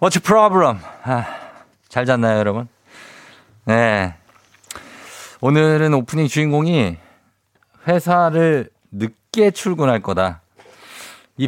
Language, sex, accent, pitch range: Korean, male, native, 110-170 Hz